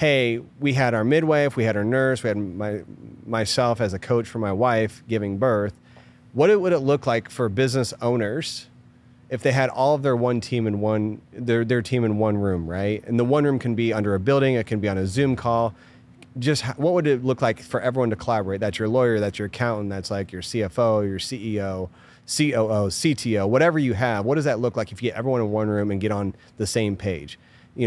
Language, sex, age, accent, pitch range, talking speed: English, male, 30-49, American, 105-125 Hz, 235 wpm